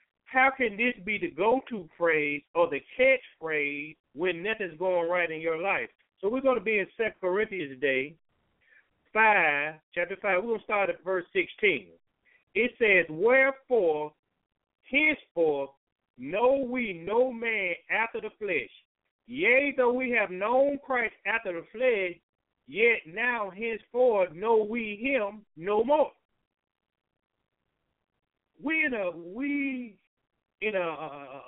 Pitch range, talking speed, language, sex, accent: 170-255 Hz, 135 wpm, English, male, American